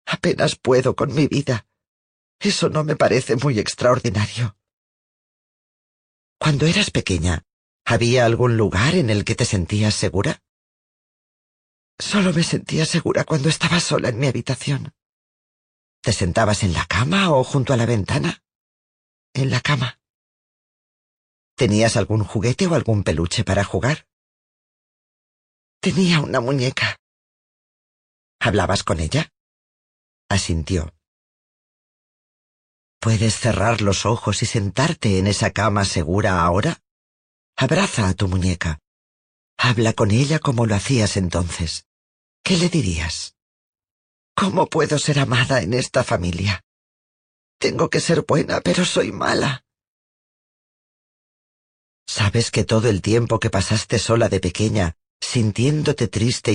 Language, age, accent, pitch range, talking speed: Spanish, 40-59, Spanish, 95-130 Hz, 120 wpm